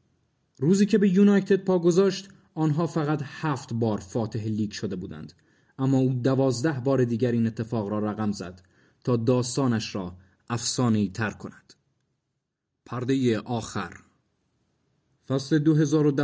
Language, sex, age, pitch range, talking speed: Persian, male, 30-49, 110-140 Hz, 120 wpm